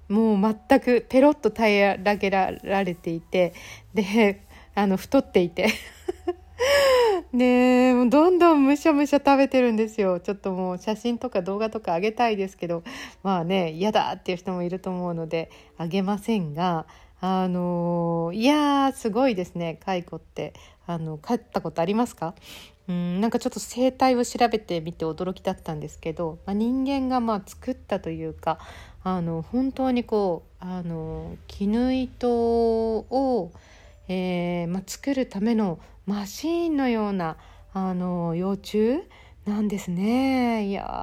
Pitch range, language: 175-235 Hz, Japanese